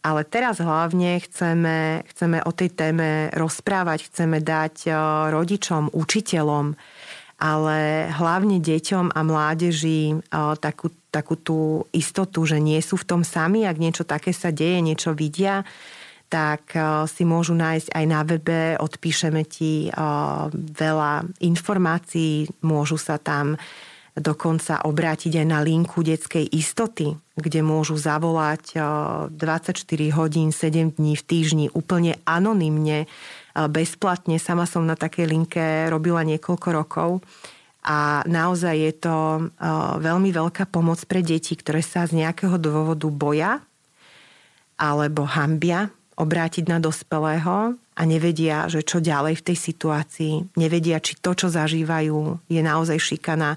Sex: female